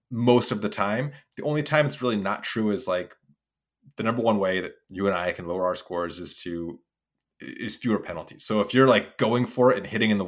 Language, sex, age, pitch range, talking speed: English, male, 30-49, 100-125 Hz, 240 wpm